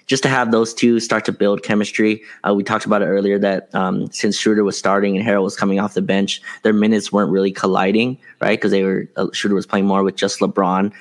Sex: male